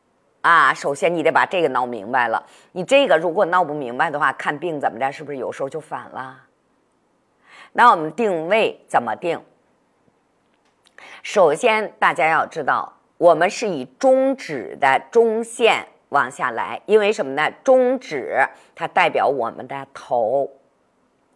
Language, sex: Chinese, female